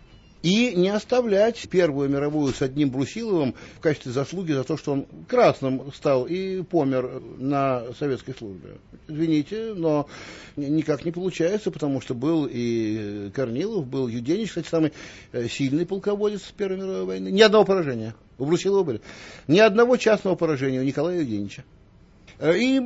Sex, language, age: male, Russian, 50-69